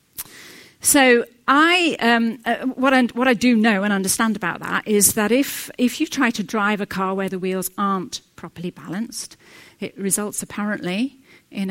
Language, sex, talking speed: English, female, 165 wpm